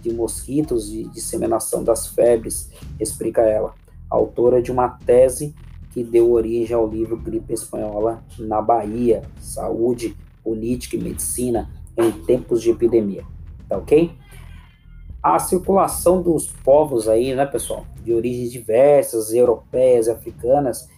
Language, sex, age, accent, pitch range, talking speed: Portuguese, male, 20-39, Brazilian, 115-140 Hz, 125 wpm